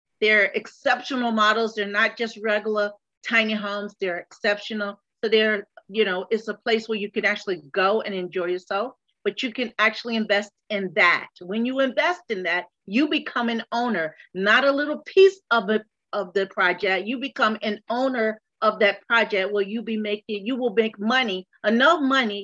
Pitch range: 205-240 Hz